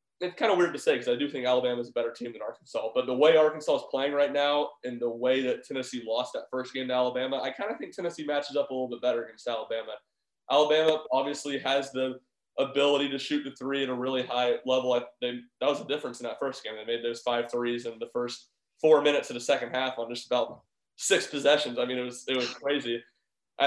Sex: male